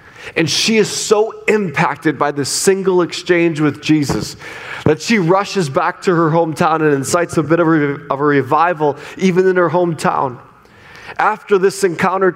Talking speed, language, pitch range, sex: 155 wpm, English, 155-195 Hz, male